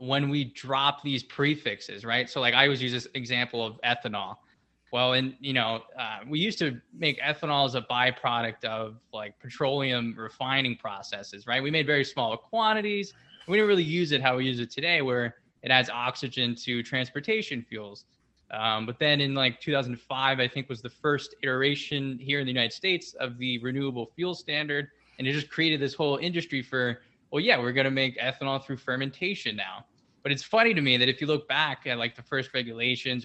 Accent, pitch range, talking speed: American, 125-150 Hz, 200 wpm